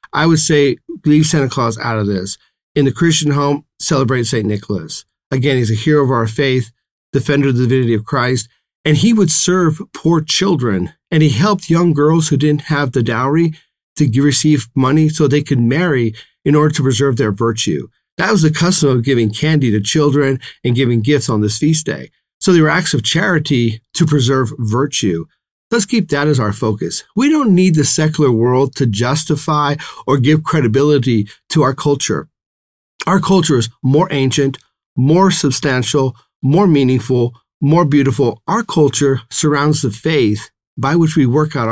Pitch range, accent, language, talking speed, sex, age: 120-155 Hz, American, English, 180 wpm, male, 40-59